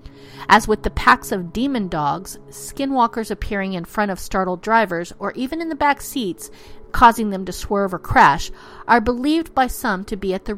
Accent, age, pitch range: American, 40-59, 175-250 Hz